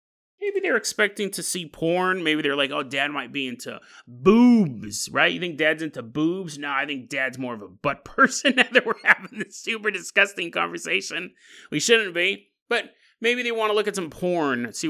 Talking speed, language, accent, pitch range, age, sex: 205 wpm, English, American, 160-235 Hz, 30-49, male